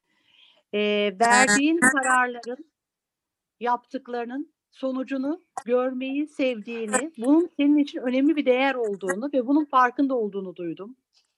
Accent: native